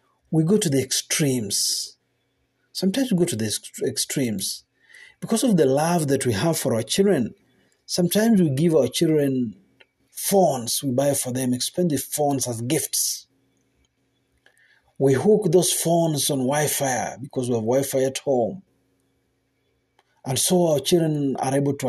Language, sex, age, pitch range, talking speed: Swahili, male, 50-69, 130-180 Hz, 150 wpm